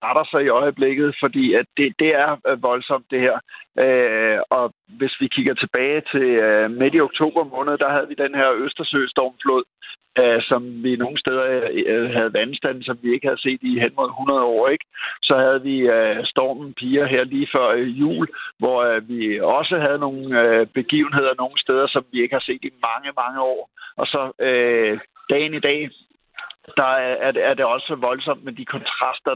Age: 60-79